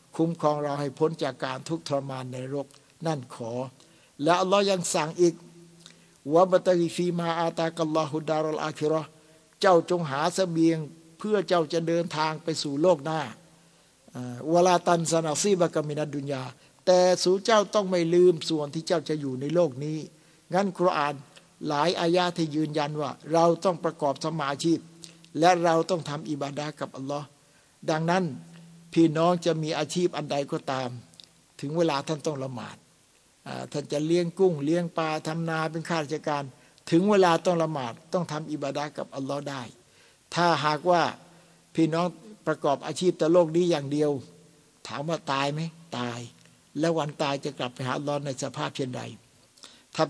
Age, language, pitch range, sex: 60-79, Thai, 145-170 Hz, male